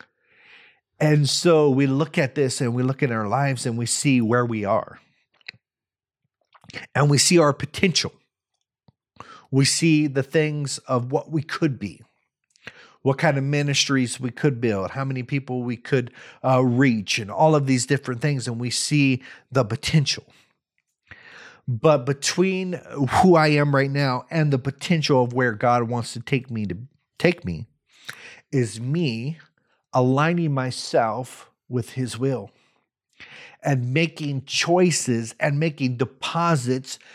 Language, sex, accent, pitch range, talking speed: English, male, American, 120-150 Hz, 145 wpm